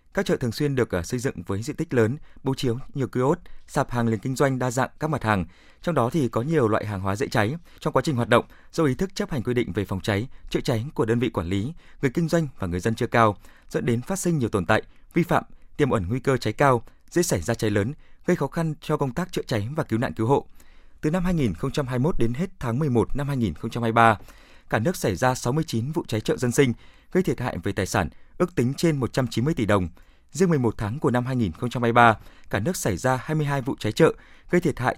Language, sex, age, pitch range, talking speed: Vietnamese, male, 20-39, 110-150 Hz, 250 wpm